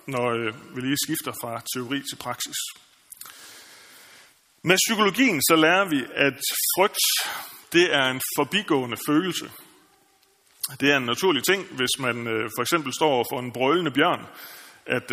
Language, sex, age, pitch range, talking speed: Danish, male, 30-49, 125-165 Hz, 145 wpm